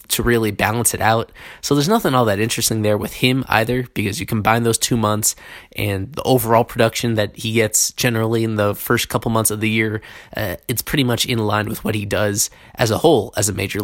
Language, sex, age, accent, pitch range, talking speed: English, male, 20-39, American, 105-120 Hz, 230 wpm